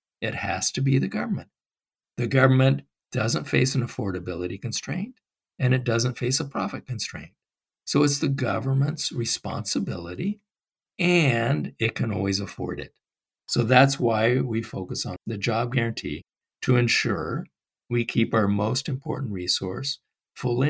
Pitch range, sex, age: 105-130 Hz, male, 50-69